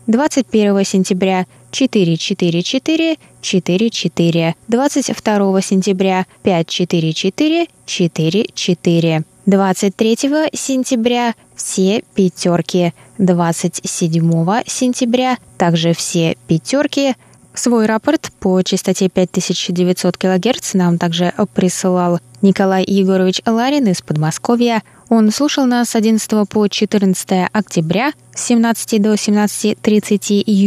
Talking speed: 90 wpm